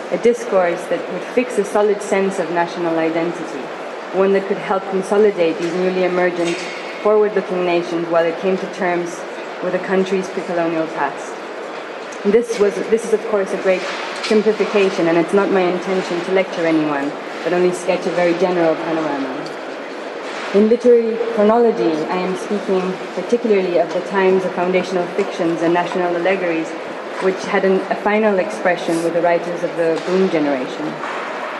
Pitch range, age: 170-205 Hz, 20-39